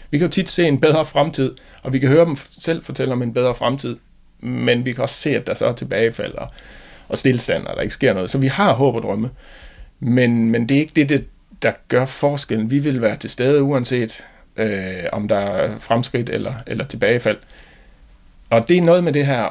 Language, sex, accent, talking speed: Danish, male, native, 225 wpm